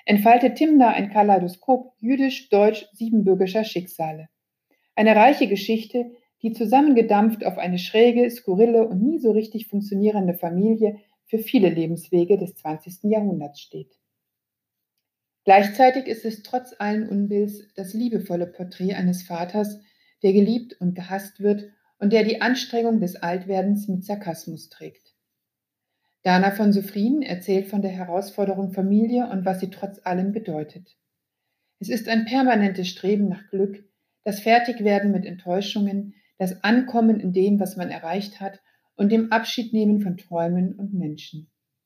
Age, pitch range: 60-79, 180-220 Hz